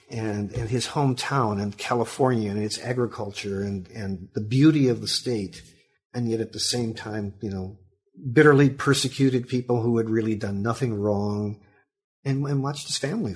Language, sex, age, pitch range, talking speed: English, male, 50-69, 100-130 Hz, 170 wpm